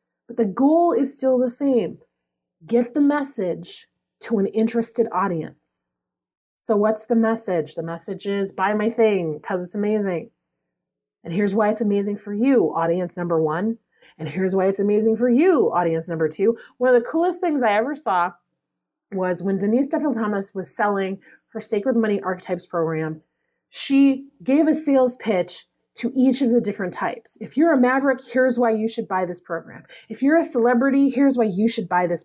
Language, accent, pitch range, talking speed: English, American, 185-275 Hz, 180 wpm